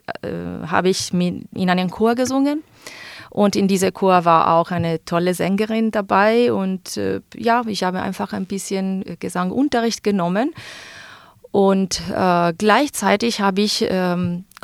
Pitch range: 170-210 Hz